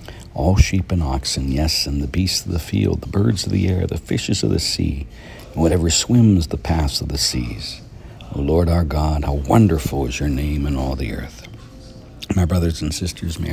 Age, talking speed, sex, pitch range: 60-79, 210 wpm, male, 70-95 Hz